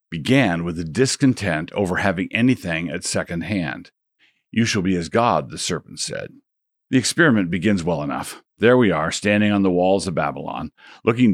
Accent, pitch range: American, 85-110 Hz